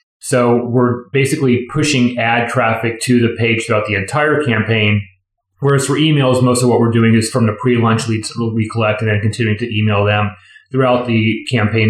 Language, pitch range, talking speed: English, 110-125 Hz, 185 wpm